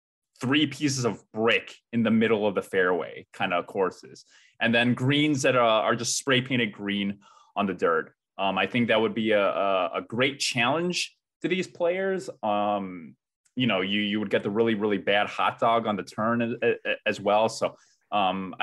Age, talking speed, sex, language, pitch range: 20-39, 190 wpm, male, English, 105-140 Hz